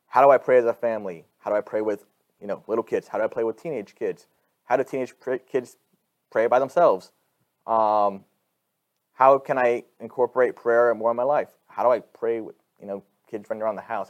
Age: 30-49